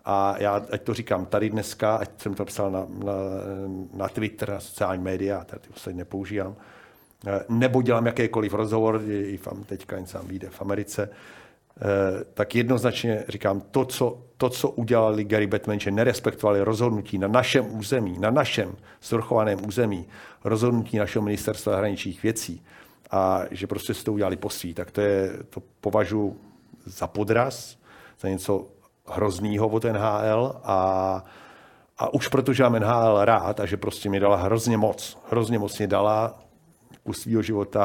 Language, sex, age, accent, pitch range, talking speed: Czech, male, 50-69, native, 100-115 Hz, 155 wpm